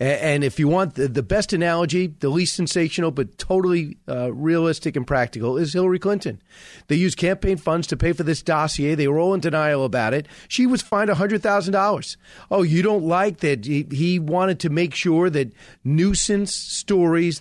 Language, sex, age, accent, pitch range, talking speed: English, male, 40-59, American, 155-195 Hz, 185 wpm